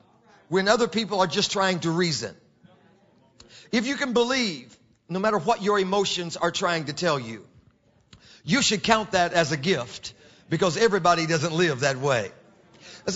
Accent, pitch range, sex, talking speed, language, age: American, 170-225 Hz, male, 165 wpm, English, 50-69